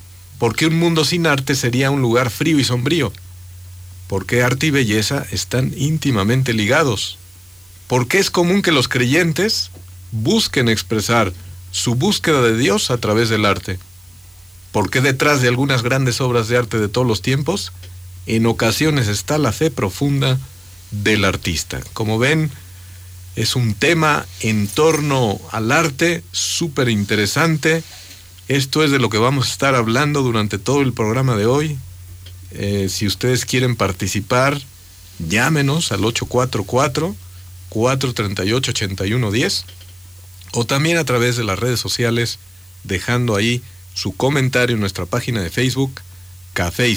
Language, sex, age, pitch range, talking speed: Spanish, male, 50-69, 90-130 Hz, 145 wpm